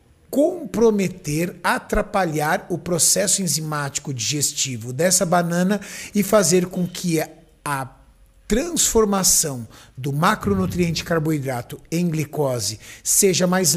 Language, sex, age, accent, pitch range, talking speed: Portuguese, male, 60-79, Brazilian, 150-190 Hz, 90 wpm